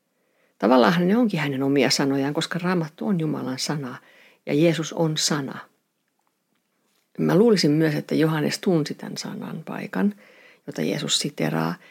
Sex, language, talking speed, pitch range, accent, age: female, Finnish, 135 wpm, 140-175 Hz, native, 50-69